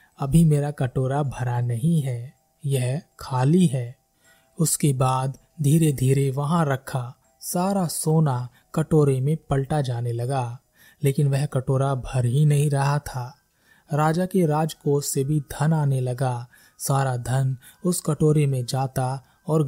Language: Hindi